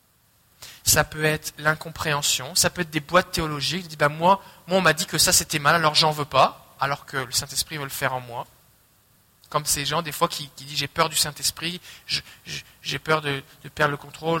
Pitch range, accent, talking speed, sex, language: 150-185 Hz, French, 230 wpm, male, French